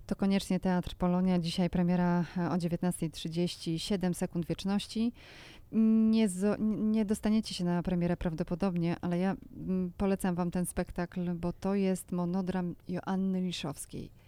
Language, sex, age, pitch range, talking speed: Polish, female, 30-49, 170-210 Hz, 125 wpm